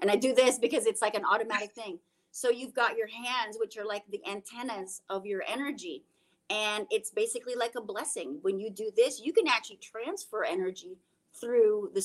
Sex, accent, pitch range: female, American, 190-265 Hz